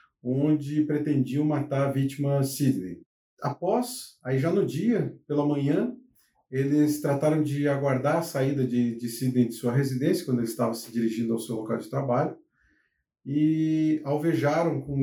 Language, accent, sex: Portuguese, Brazilian, male